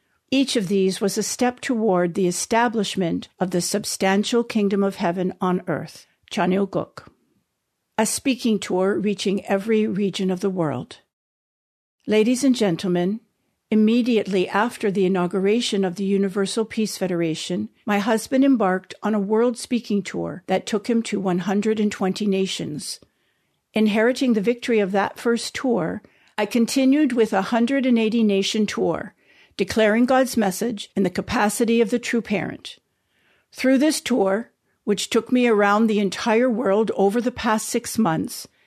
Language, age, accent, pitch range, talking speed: English, 50-69, American, 195-230 Hz, 145 wpm